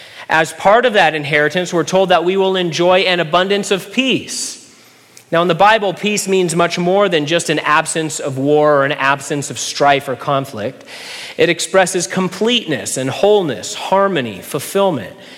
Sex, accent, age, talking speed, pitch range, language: male, American, 30-49, 170 wpm, 150-195 Hz, English